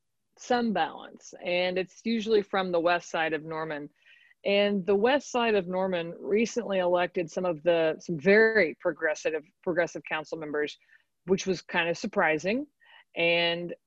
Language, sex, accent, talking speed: English, female, American, 145 wpm